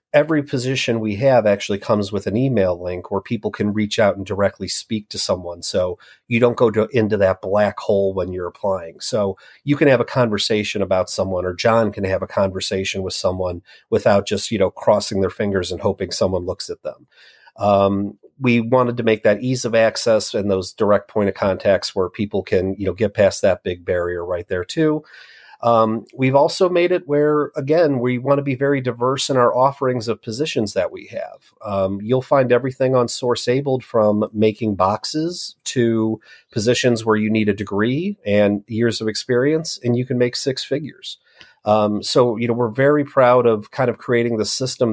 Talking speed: 200 wpm